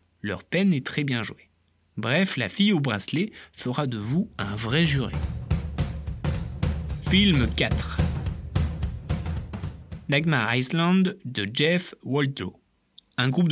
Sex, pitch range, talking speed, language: male, 125-175 Hz, 115 wpm, French